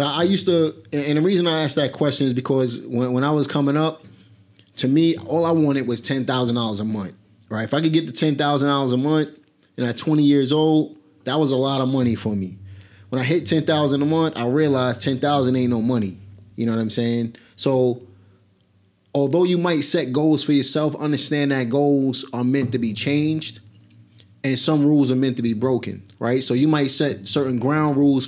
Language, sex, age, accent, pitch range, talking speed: English, male, 20-39, American, 115-145 Hz, 220 wpm